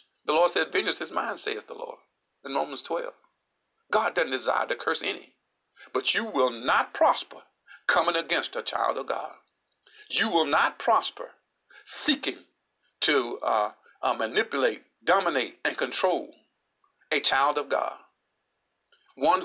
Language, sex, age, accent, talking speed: English, male, 50-69, American, 140 wpm